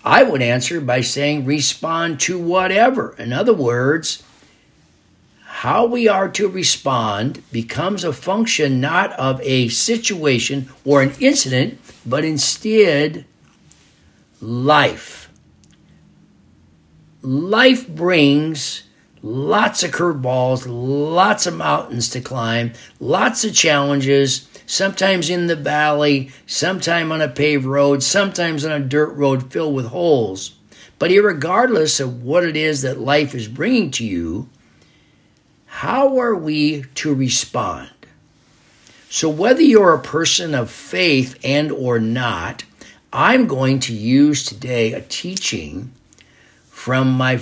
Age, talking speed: 50-69, 120 wpm